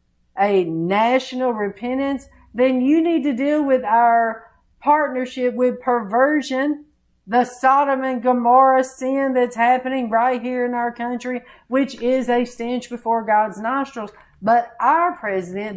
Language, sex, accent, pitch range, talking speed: English, female, American, 185-255 Hz, 135 wpm